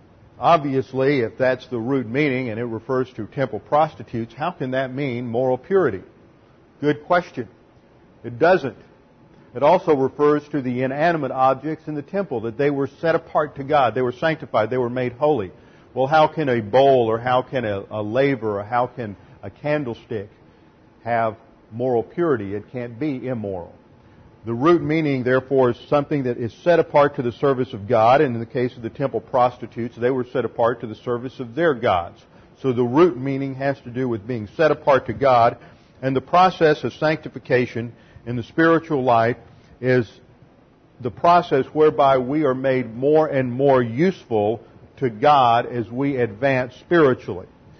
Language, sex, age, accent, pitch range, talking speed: English, male, 50-69, American, 120-145 Hz, 175 wpm